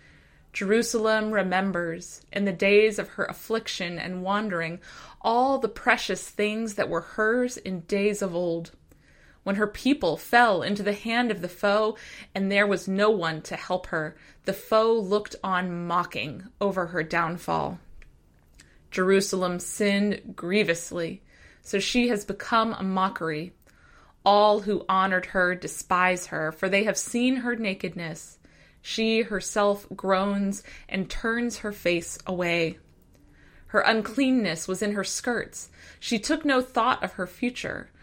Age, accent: 20-39, American